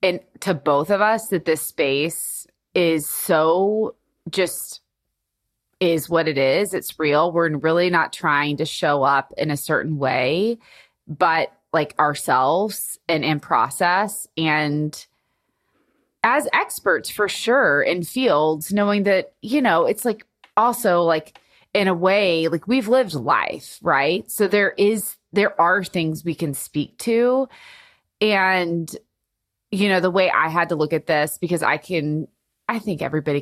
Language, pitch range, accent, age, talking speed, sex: English, 150-195 Hz, American, 20-39, 150 wpm, female